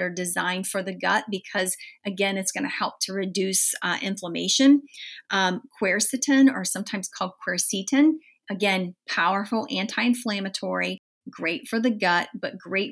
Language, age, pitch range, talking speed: English, 30-49, 185-215 Hz, 140 wpm